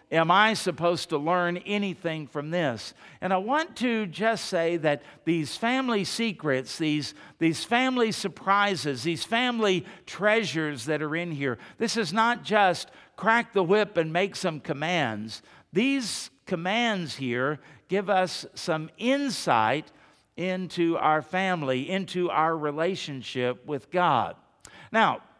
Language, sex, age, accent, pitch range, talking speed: English, male, 50-69, American, 150-195 Hz, 130 wpm